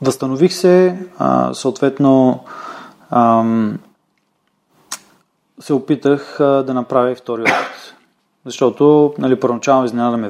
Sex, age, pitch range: male, 20-39, 120-145 Hz